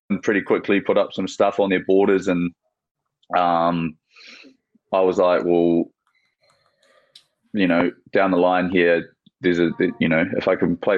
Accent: Australian